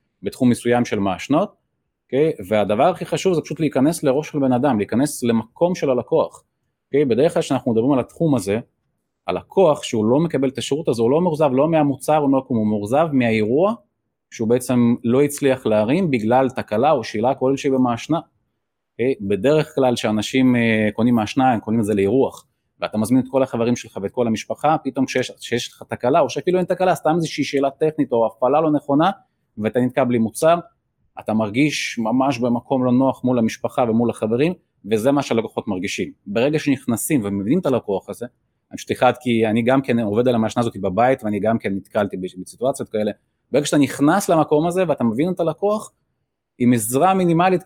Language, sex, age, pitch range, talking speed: Hebrew, male, 30-49, 115-145 Hz, 180 wpm